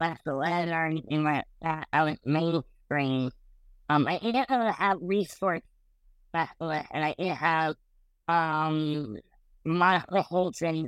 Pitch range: 135-165 Hz